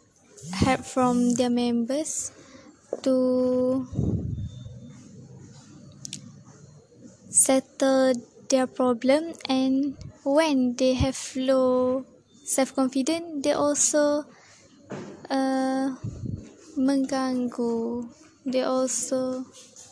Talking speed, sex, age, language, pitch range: 60 wpm, female, 20-39, English, 245-270 Hz